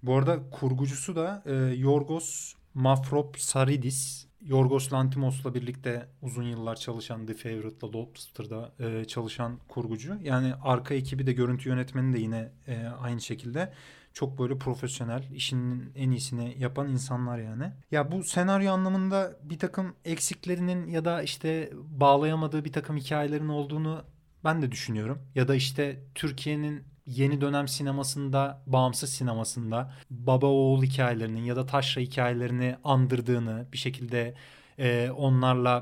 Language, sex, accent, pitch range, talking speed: Turkish, male, native, 125-145 Hz, 125 wpm